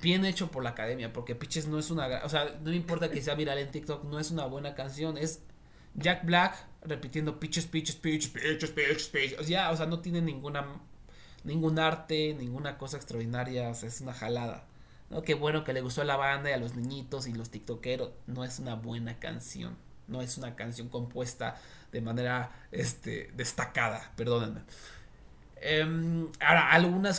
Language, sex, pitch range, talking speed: Spanish, male, 120-160 Hz, 190 wpm